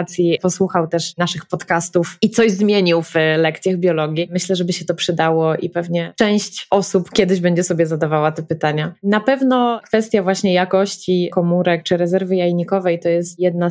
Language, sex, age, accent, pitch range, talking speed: Polish, female, 20-39, native, 170-190 Hz, 160 wpm